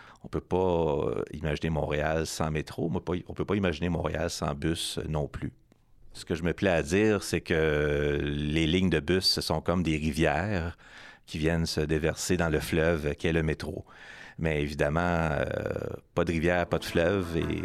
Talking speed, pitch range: 185 wpm, 80-95 Hz